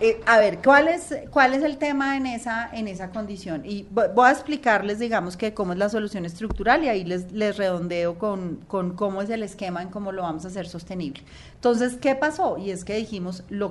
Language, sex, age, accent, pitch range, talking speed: Spanish, female, 30-49, Colombian, 185-235 Hz, 225 wpm